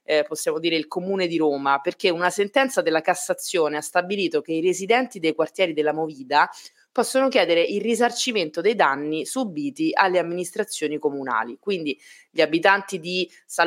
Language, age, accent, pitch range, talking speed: Italian, 20-39, native, 155-195 Hz, 160 wpm